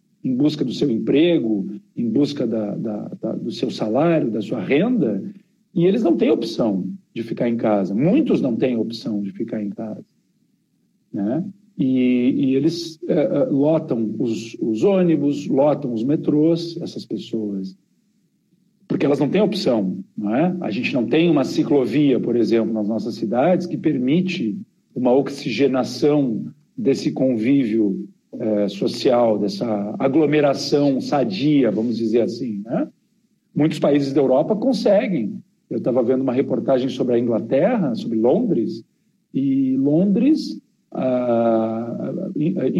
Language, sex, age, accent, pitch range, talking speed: Portuguese, male, 50-69, Brazilian, 125-195 Hz, 130 wpm